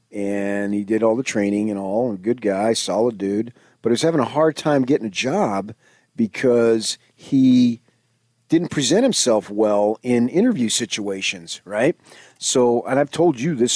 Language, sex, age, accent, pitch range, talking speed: English, male, 40-59, American, 105-140 Hz, 170 wpm